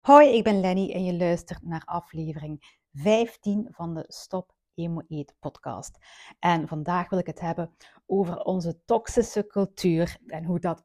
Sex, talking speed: female, 155 wpm